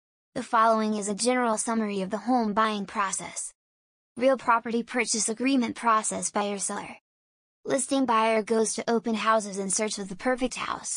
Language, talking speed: English, 160 wpm